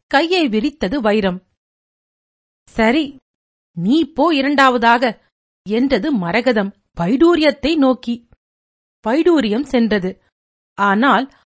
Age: 50-69